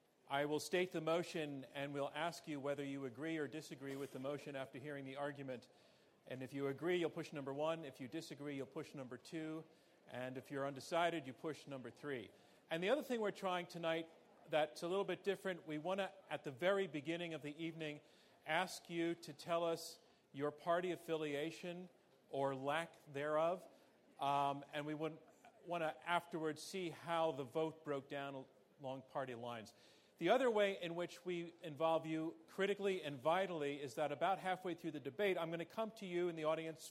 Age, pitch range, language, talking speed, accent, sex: 40-59, 145-170 Hz, English, 195 wpm, American, male